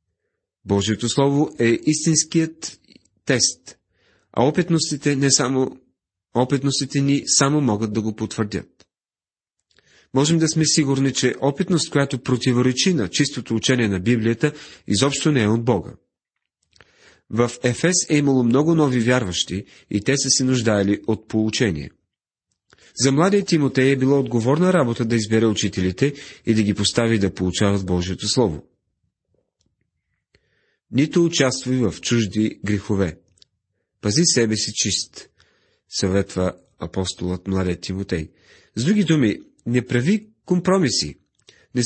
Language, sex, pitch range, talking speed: Bulgarian, male, 105-140 Hz, 125 wpm